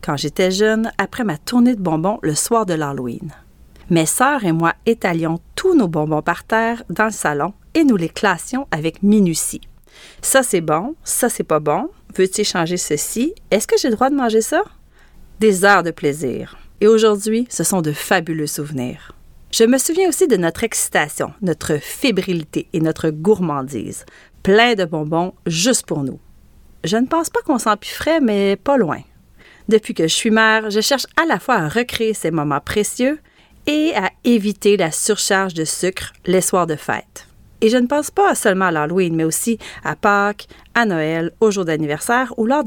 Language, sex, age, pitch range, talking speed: French, female, 40-59, 160-235 Hz, 185 wpm